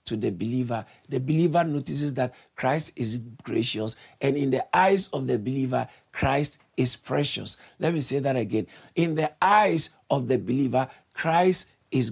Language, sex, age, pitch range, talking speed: English, male, 50-69, 120-150 Hz, 160 wpm